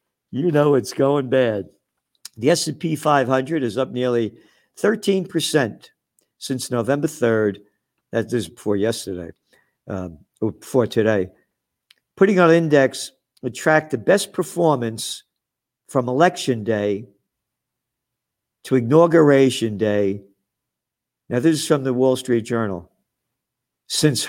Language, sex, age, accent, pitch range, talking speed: English, male, 50-69, American, 115-160 Hz, 110 wpm